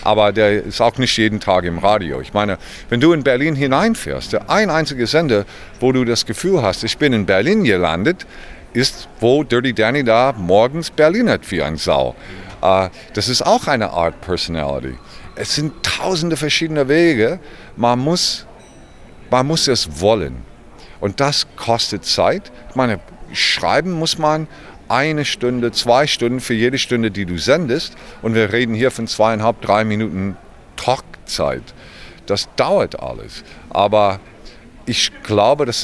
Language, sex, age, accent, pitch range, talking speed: German, male, 50-69, German, 105-140 Hz, 155 wpm